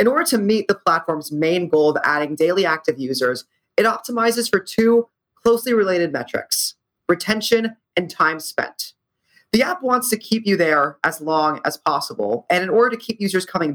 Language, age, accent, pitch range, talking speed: English, 30-49, American, 155-210 Hz, 185 wpm